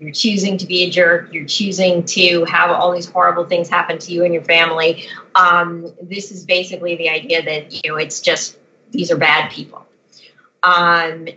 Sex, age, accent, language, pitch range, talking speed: female, 30-49, American, English, 160-185 Hz, 190 wpm